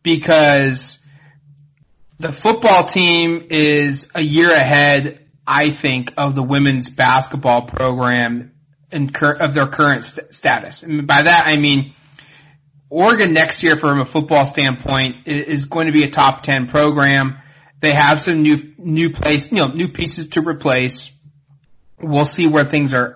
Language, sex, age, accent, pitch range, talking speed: English, male, 30-49, American, 140-160 Hz, 150 wpm